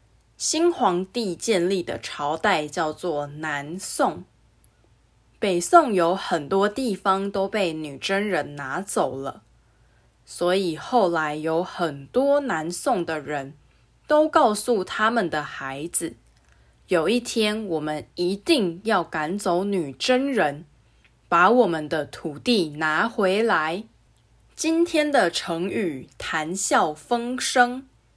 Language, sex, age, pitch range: English, female, 20-39, 150-225 Hz